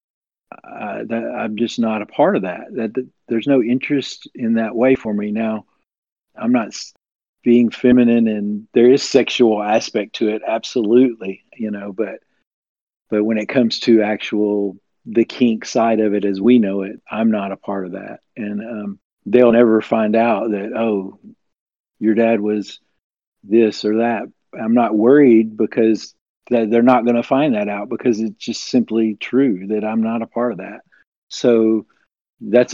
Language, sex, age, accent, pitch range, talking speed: English, male, 50-69, American, 110-125 Hz, 175 wpm